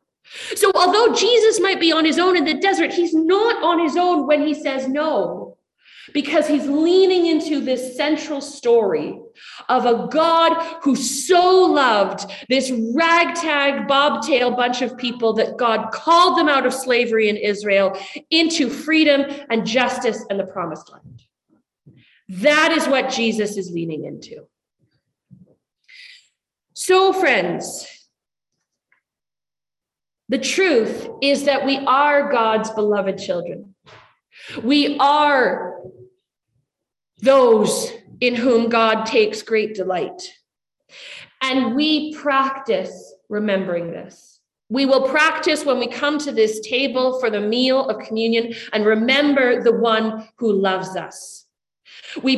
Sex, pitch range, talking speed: female, 225-315 Hz, 125 wpm